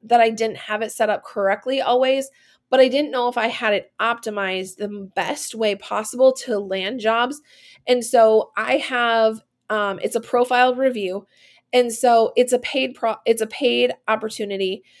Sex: female